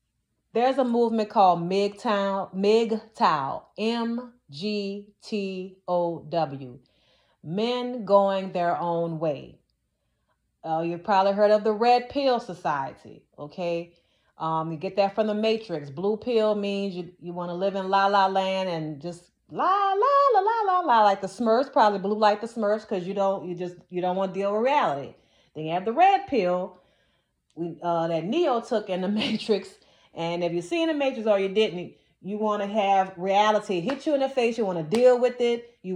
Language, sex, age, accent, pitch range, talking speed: English, female, 30-49, American, 180-235 Hz, 185 wpm